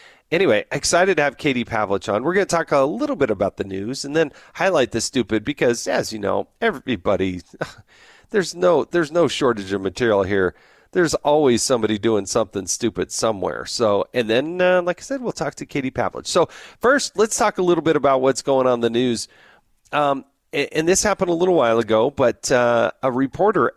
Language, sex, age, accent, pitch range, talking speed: English, male, 40-59, American, 115-165 Hz, 200 wpm